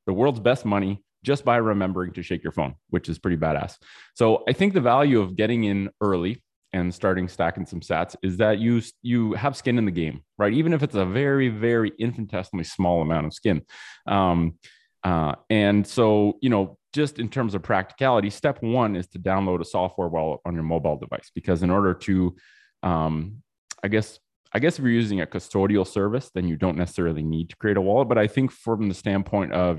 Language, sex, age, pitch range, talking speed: English, male, 30-49, 85-110 Hz, 210 wpm